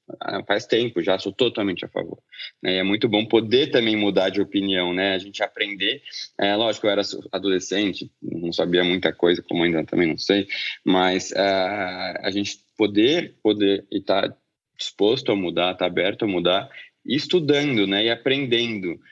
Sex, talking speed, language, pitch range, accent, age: male, 170 wpm, Portuguese, 95-110 Hz, Brazilian, 20-39